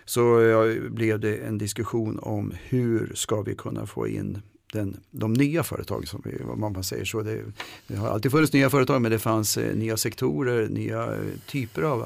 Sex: male